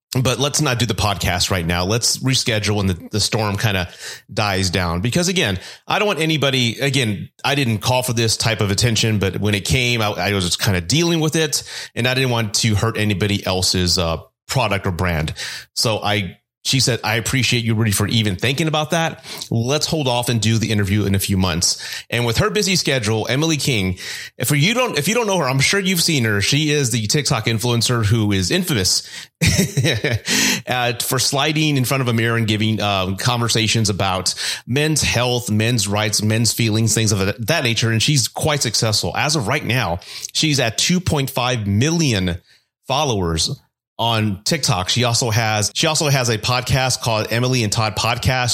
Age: 30-49